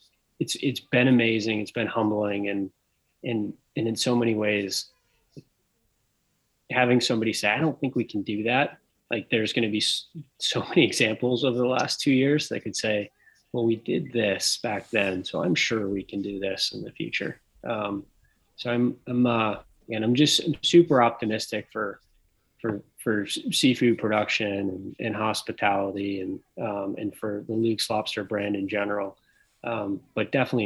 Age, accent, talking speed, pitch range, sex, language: 20-39, American, 170 wpm, 100-125 Hz, male, English